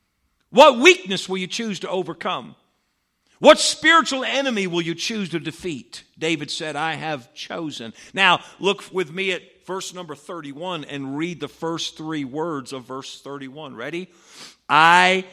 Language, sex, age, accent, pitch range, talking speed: English, male, 50-69, American, 160-265 Hz, 155 wpm